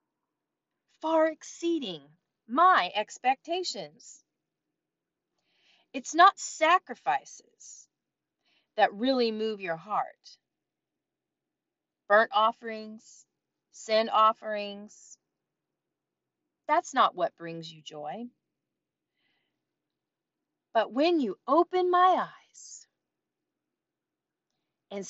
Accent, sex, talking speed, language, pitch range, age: American, female, 70 wpm, English, 215-340 Hz, 30-49